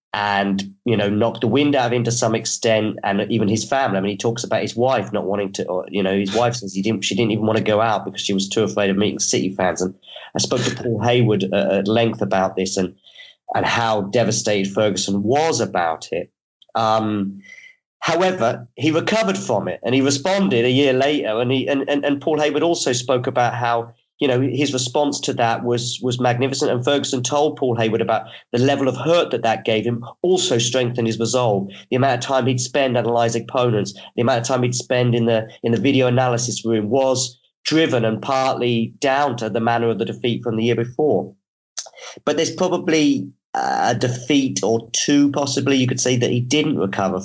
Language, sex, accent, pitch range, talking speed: English, male, British, 110-135 Hz, 215 wpm